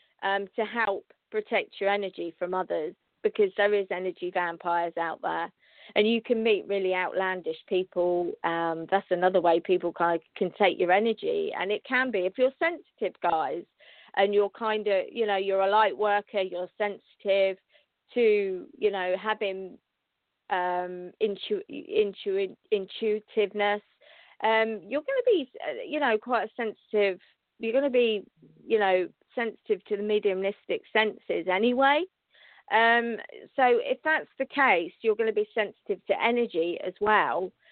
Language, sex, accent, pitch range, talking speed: English, female, British, 195-255 Hz, 155 wpm